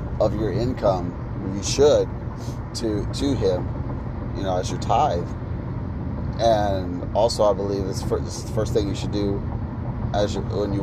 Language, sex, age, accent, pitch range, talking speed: English, male, 30-49, American, 100-115 Hz, 155 wpm